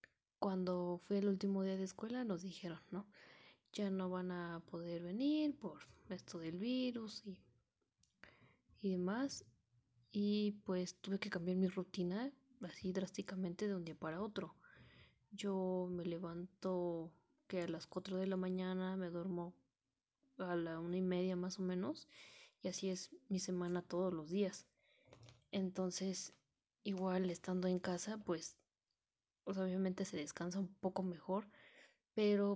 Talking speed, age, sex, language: 145 wpm, 20-39, female, English